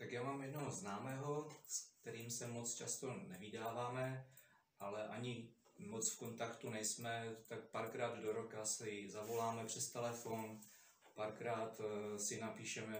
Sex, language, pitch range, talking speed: male, Czech, 110-125 Hz, 130 wpm